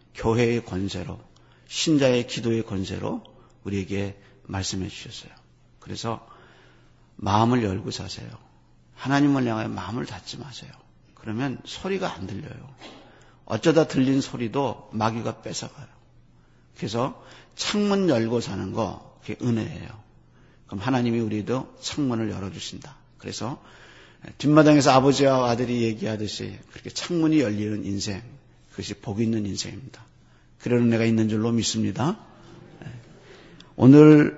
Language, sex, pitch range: Korean, male, 105-140 Hz